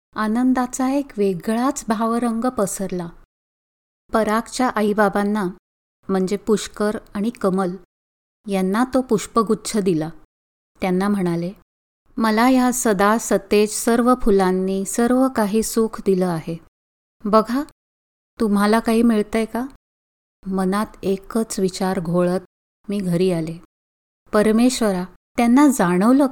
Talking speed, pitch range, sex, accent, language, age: 100 wpm, 195-245 Hz, female, native, Marathi, 20-39